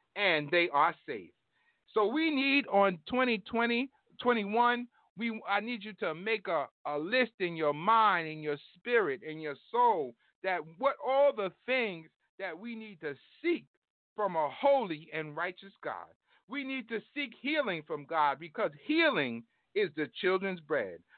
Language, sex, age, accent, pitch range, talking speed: English, male, 50-69, American, 175-265 Hz, 160 wpm